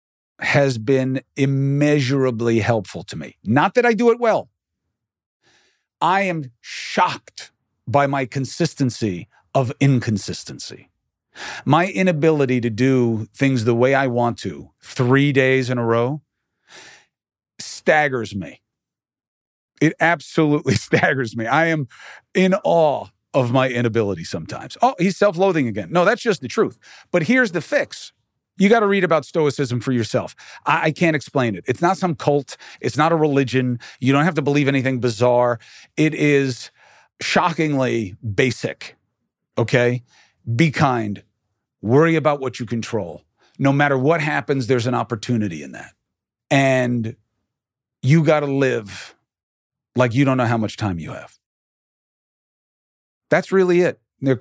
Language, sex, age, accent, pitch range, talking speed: English, male, 40-59, American, 120-155 Hz, 140 wpm